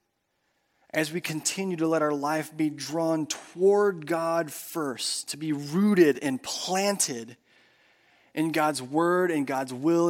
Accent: American